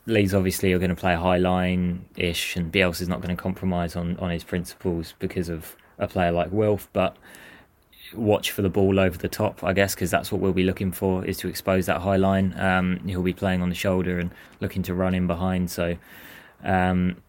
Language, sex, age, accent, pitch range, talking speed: English, male, 20-39, British, 90-100 Hz, 220 wpm